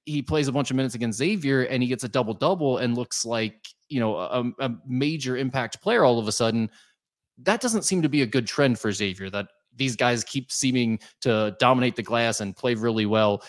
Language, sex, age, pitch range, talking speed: English, male, 20-39, 110-135 Hz, 225 wpm